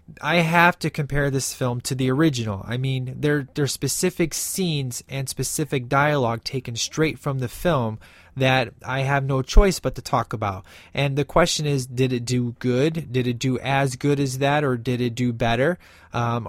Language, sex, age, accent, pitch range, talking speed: English, male, 20-39, American, 125-150 Hz, 195 wpm